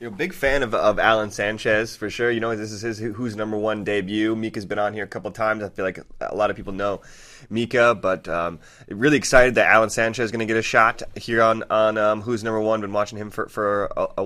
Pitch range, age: 105-125 Hz, 20-39